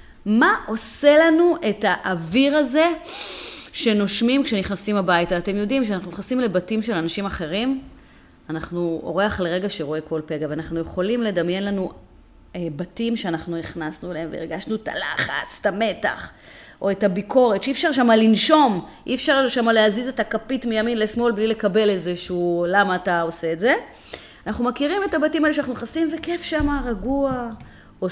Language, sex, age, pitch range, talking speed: English, female, 30-49, 195-275 Hz, 130 wpm